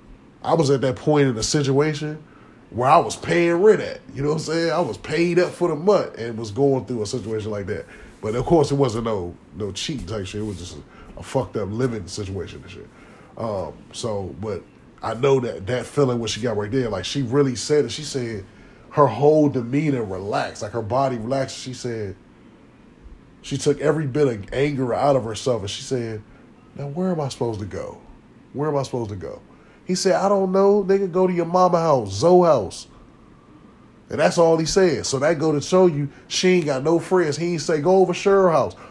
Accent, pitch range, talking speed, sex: American, 115-160 Hz, 225 wpm, male